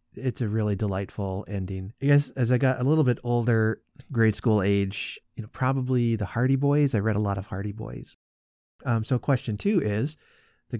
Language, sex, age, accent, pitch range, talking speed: English, male, 30-49, American, 105-120 Hz, 200 wpm